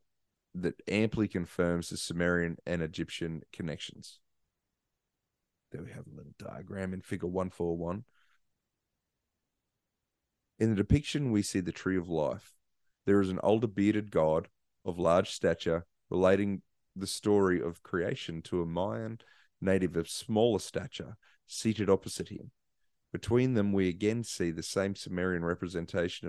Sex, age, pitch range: male, 30-49, 85-105 Hz